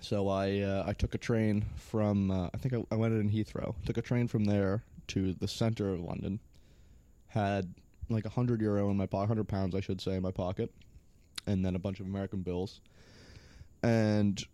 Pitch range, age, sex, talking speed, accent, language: 95-115 Hz, 20-39, male, 205 wpm, American, English